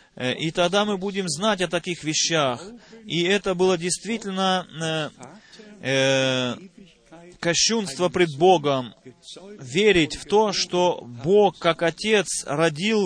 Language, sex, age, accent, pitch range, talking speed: Russian, male, 30-49, native, 170-215 Hz, 115 wpm